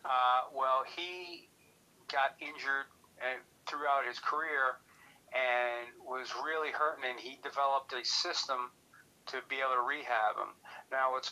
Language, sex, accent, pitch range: English, male, American, 120-145 Hz